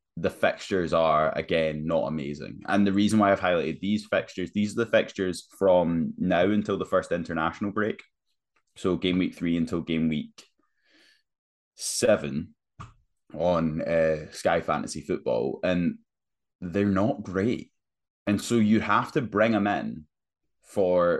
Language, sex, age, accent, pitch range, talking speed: English, male, 20-39, British, 85-105 Hz, 145 wpm